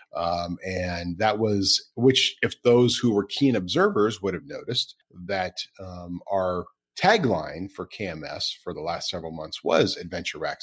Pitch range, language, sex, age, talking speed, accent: 90-115 Hz, English, male, 40-59, 160 wpm, American